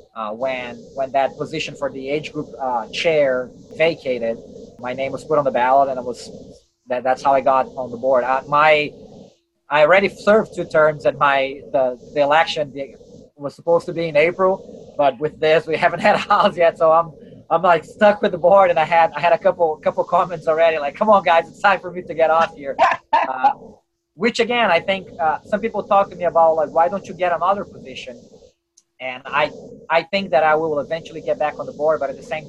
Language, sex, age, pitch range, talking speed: English, male, 20-39, 140-180 Hz, 225 wpm